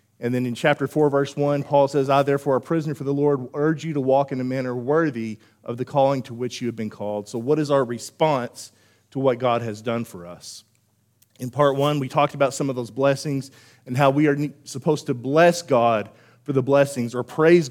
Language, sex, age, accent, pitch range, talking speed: English, male, 40-59, American, 120-145 Hz, 230 wpm